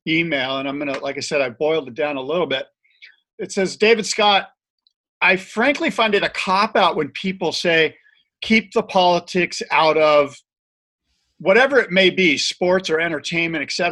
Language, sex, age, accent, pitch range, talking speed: English, male, 50-69, American, 145-200 Hz, 175 wpm